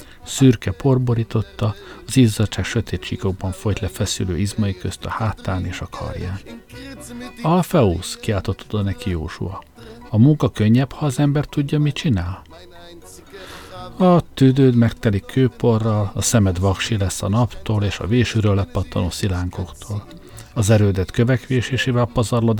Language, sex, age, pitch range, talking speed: Hungarian, male, 60-79, 95-125 Hz, 130 wpm